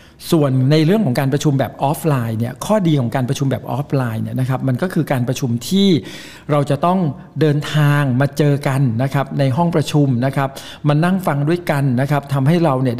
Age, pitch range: 60-79, 130-160 Hz